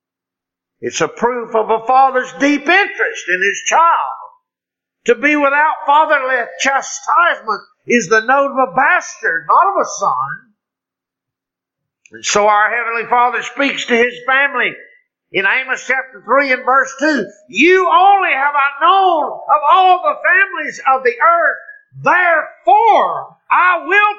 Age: 50-69